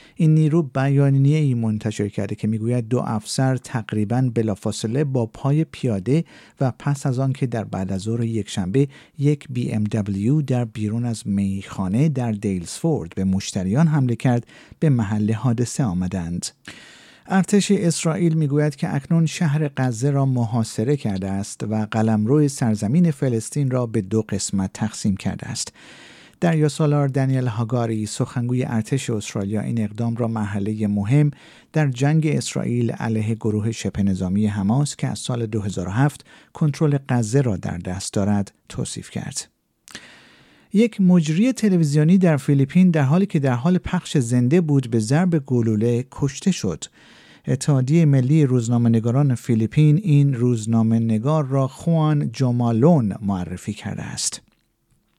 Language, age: Persian, 50-69